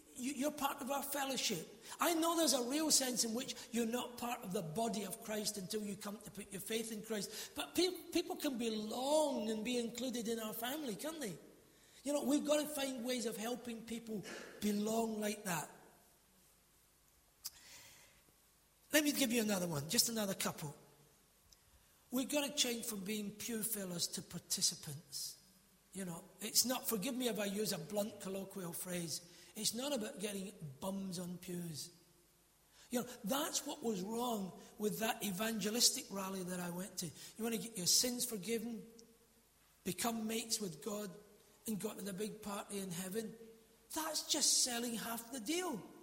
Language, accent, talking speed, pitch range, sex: English, British, 175 wpm, 200-250 Hz, male